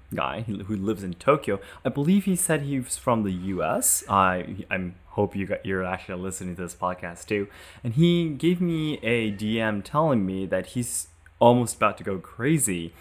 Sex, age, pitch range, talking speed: male, 20-39, 95-120 Hz, 190 wpm